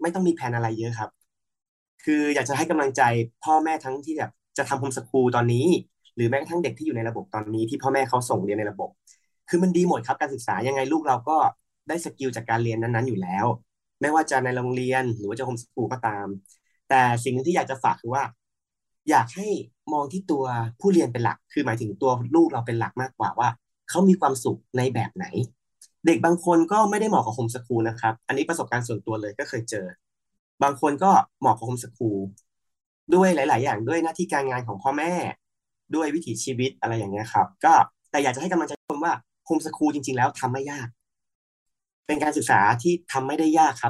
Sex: male